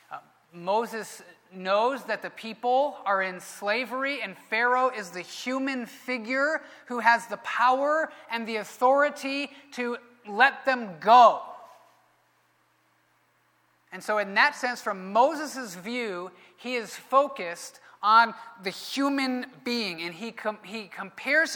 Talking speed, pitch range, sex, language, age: 120 wpm, 210-255 Hz, male, English, 30-49